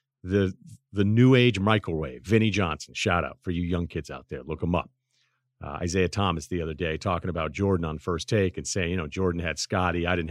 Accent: American